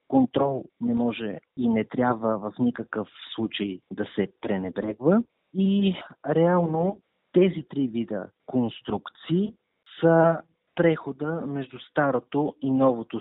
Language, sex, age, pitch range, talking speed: Bulgarian, male, 40-59, 115-145 Hz, 110 wpm